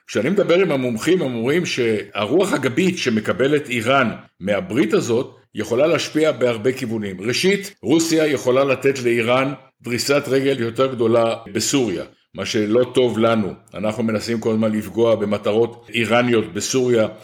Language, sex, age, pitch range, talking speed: Hebrew, male, 60-79, 115-135 Hz, 130 wpm